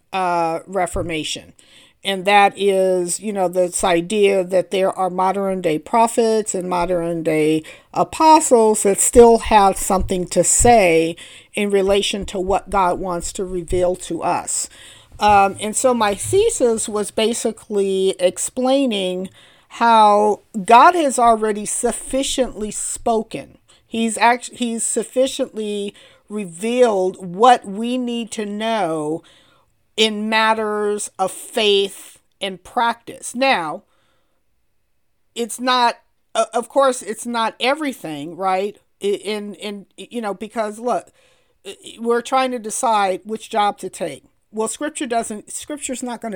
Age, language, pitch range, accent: 40-59, English, 190-235 Hz, American